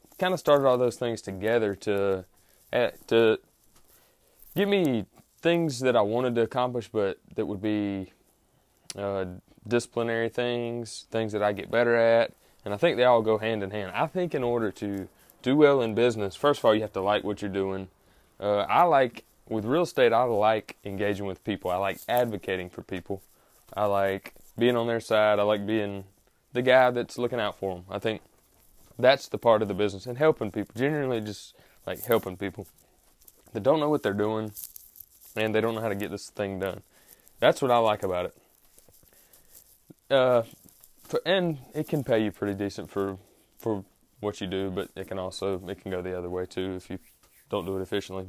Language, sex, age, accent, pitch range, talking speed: English, male, 20-39, American, 95-120 Hz, 200 wpm